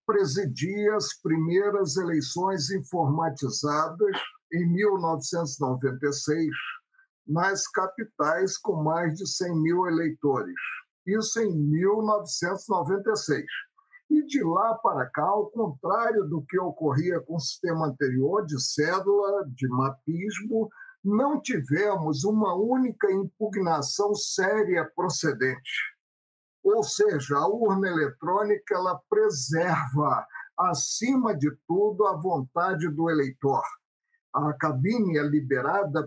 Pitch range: 150-215 Hz